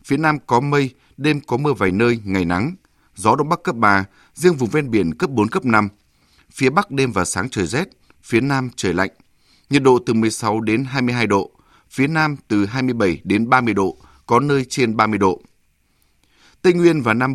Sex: male